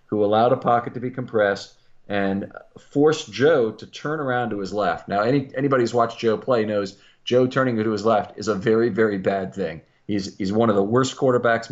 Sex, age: male, 40-59